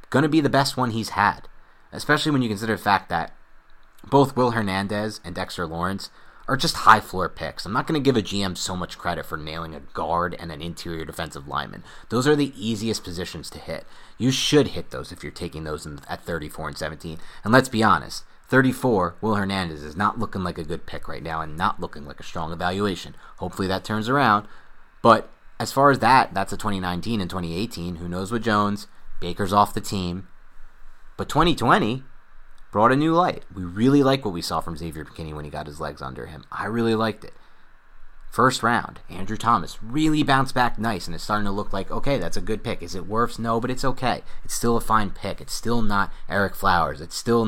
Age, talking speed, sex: 30-49, 220 wpm, male